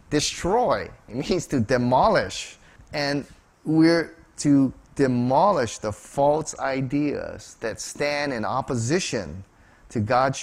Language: English